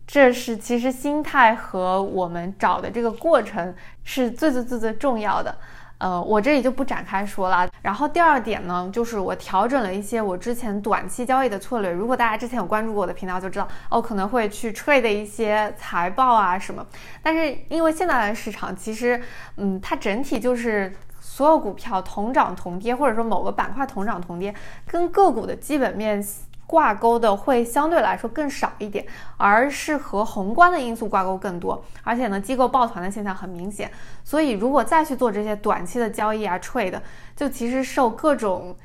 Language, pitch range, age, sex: Chinese, 195-260 Hz, 20-39, female